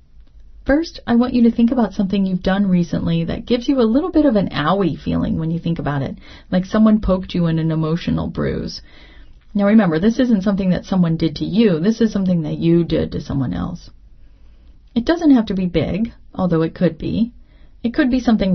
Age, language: 30-49, English